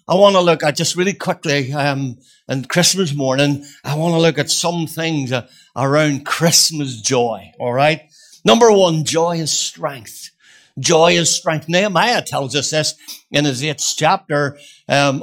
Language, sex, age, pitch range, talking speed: English, male, 60-79, 140-175 Hz, 165 wpm